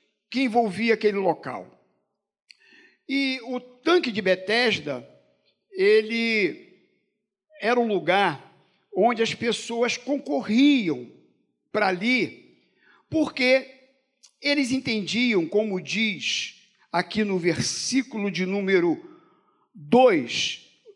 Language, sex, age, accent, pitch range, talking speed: Portuguese, male, 50-69, Brazilian, 200-280 Hz, 85 wpm